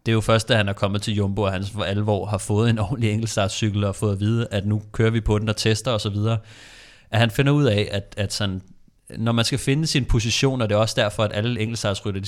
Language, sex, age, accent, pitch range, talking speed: Danish, male, 30-49, native, 100-115 Hz, 260 wpm